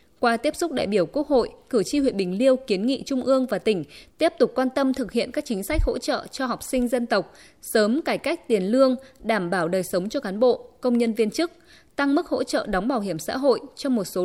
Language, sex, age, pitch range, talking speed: Vietnamese, female, 20-39, 205-270 Hz, 260 wpm